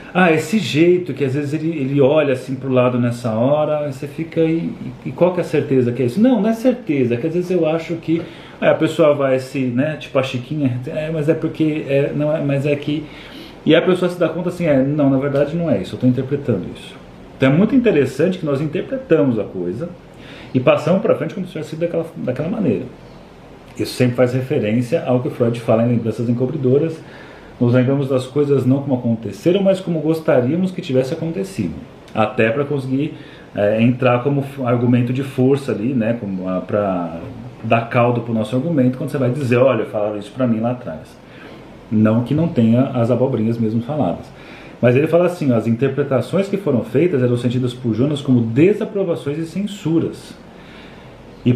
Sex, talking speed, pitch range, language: male, 205 wpm, 125-160 Hz, Portuguese